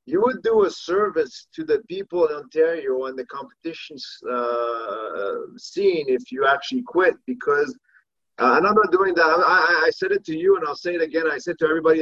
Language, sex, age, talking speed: English, male, 30-49, 205 wpm